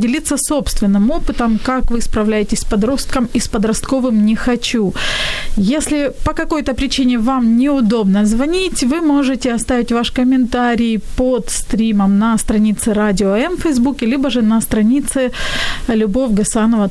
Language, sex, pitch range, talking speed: Ukrainian, female, 205-255 Hz, 140 wpm